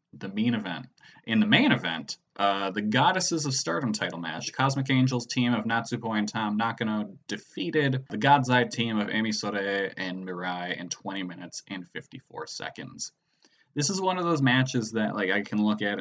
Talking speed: 185 wpm